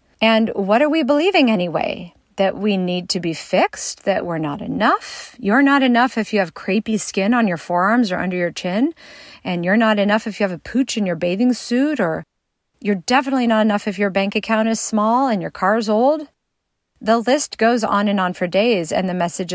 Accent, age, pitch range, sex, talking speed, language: American, 40-59, 180-230 Hz, female, 220 wpm, English